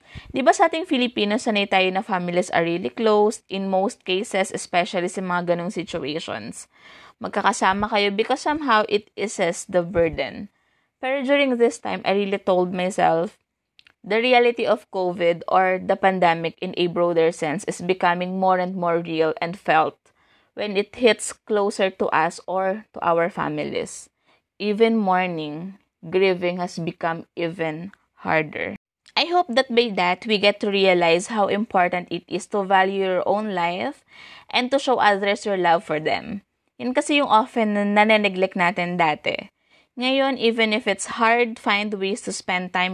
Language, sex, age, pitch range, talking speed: English, female, 20-39, 180-225 Hz, 160 wpm